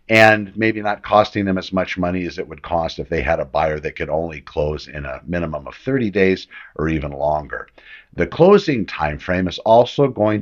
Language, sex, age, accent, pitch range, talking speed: English, male, 60-79, American, 80-105 Hz, 205 wpm